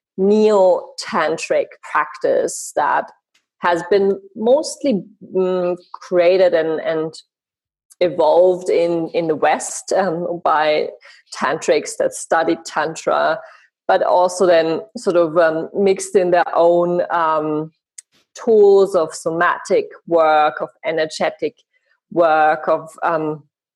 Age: 30-49